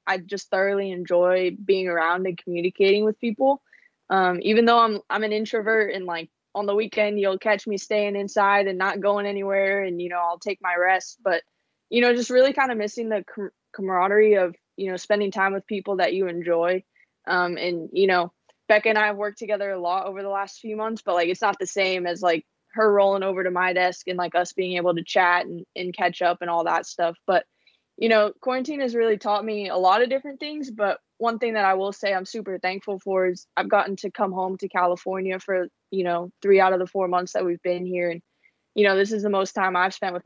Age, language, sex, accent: 20-39, English, female, American